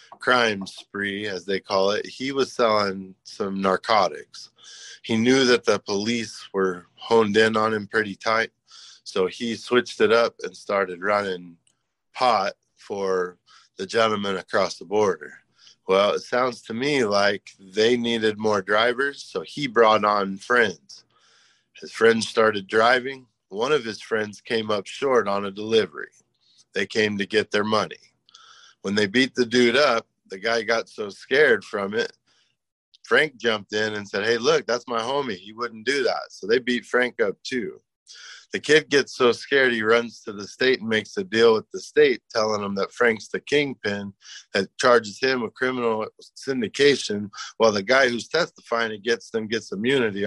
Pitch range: 100-120 Hz